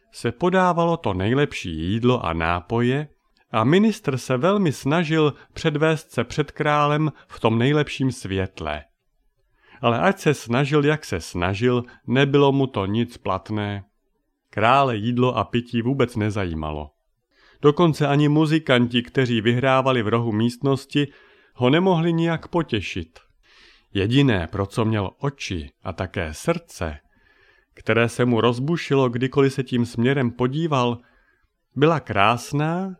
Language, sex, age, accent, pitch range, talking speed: Czech, male, 40-59, native, 110-145 Hz, 125 wpm